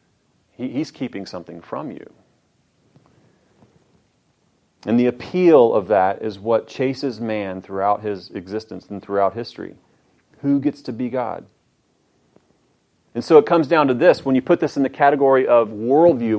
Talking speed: 150 wpm